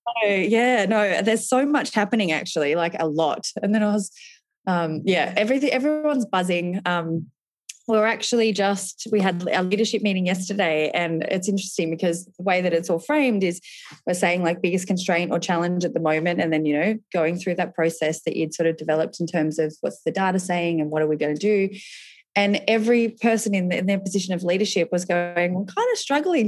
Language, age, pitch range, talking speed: English, 20-39, 165-215 Hz, 210 wpm